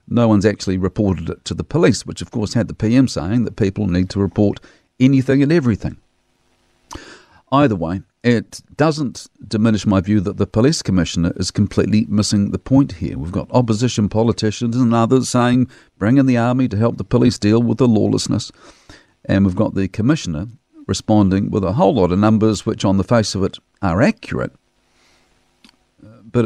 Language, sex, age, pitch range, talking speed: English, male, 50-69, 100-120 Hz, 180 wpm